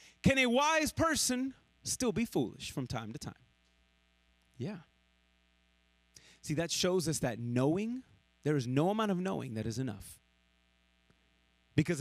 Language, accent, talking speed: English, American, 140 wpm